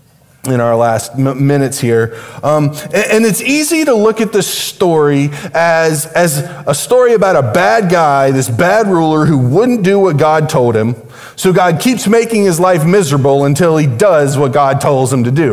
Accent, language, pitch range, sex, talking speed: American, English, 135-190 Hz, male, 190 wpm